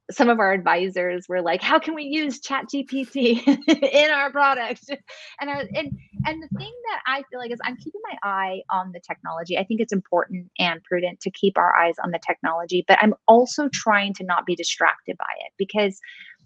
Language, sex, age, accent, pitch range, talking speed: English, female, 30-49, American, 180-245 Hz, 210 wpm